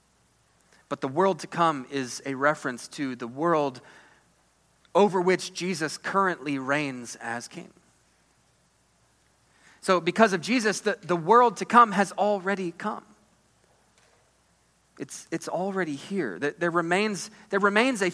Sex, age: male, 30-49